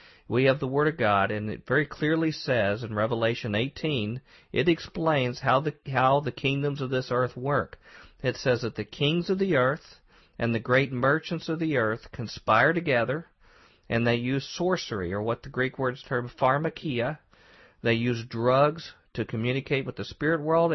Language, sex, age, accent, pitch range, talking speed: English, male, 50-69, American, 115-145 Hz, 180 wpm